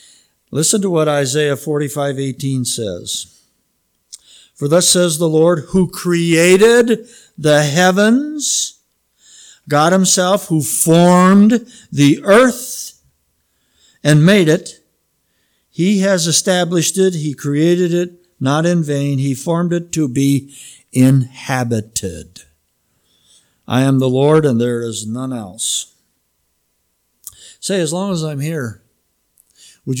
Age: 60-79